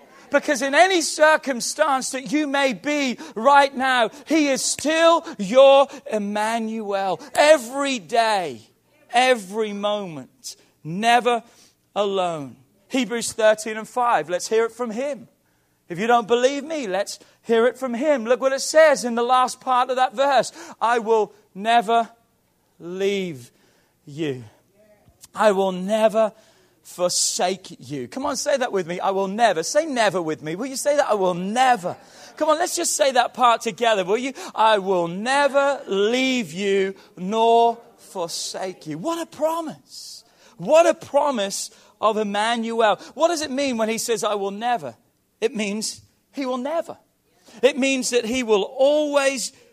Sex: male